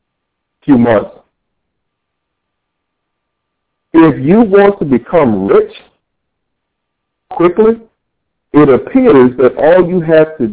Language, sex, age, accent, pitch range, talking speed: English, male, 50-69, American, 130-210 Hz, 90 wpm